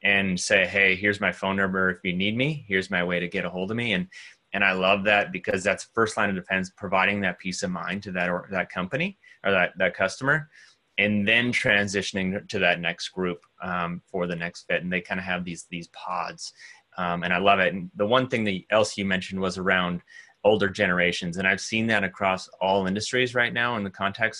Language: English